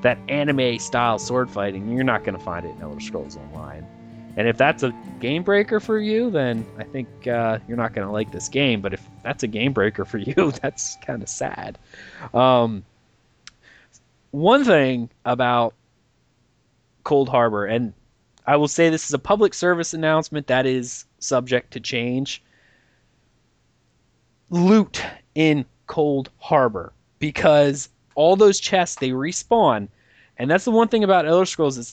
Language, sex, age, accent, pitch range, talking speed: English, male, 20-39, American, 115-165 Hz, 160 wpm